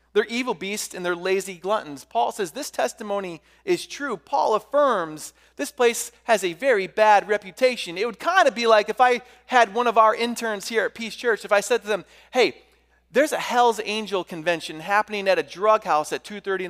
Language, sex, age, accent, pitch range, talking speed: English, male, 30-49, American, 140-225 Hz, 205 wpm